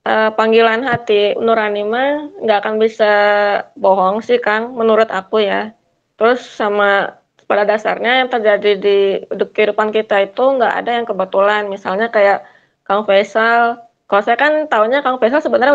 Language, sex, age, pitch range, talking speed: Indonesian, female, 20-39, 205-240 Hz, 150 wpm